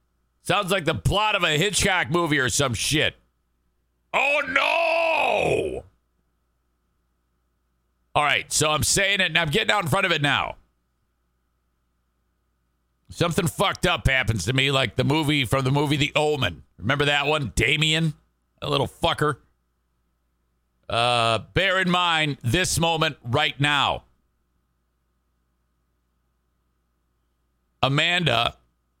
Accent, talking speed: American, 120 wpm